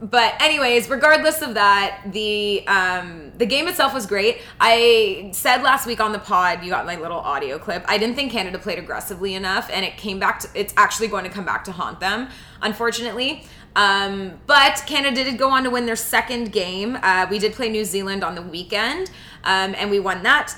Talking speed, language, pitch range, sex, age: 210 wpm, English, 195-260 Hz, female, 20-39